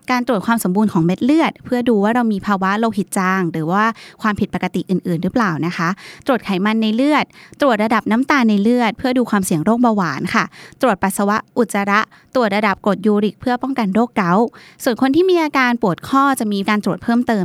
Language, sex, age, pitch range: Thai, female, 20-39, 195-245 Hz